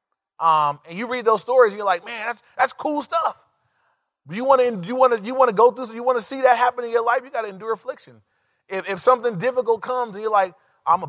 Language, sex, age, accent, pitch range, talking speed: English, male, 20-39, American, 160-225 Hz, 255 wpm